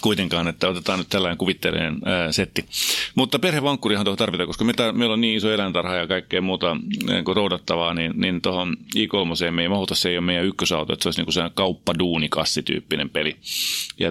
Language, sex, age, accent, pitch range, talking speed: Finnish, male, 30-49, native, 90-115 Hz, 185 wpm